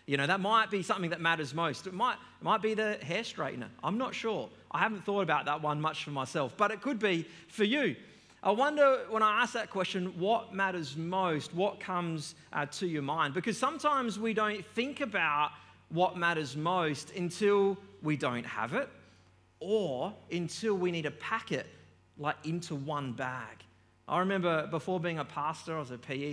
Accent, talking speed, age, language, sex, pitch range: Australian, 195 wpm, 30-49, English, male, 150-200 Hz